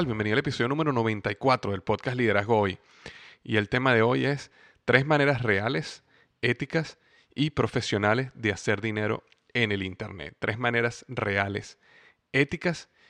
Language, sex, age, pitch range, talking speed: Spanish, male, 30-49, 105-125 Hz, 140 wpm